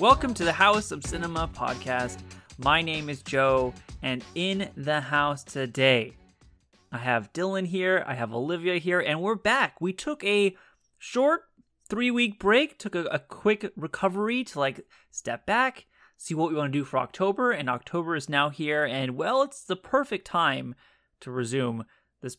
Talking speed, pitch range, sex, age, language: 170 wpm, 130-205 Hz, male, 20-39, English